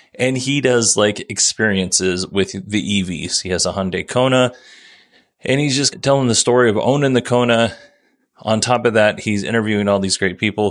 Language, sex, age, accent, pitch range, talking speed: English, male, 30-49, American, 95-120 Hz, 185 wpm